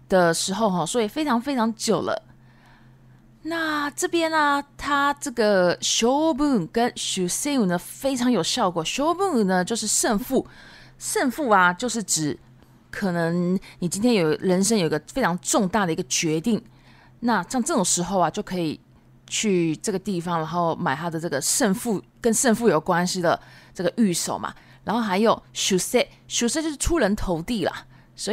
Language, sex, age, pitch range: Japanese, female, 20-39, 160-235 Hz